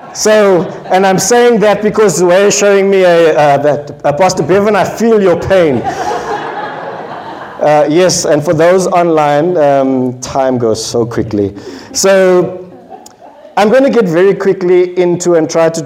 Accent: South African